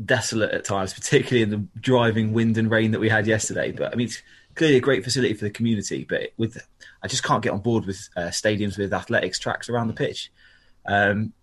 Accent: British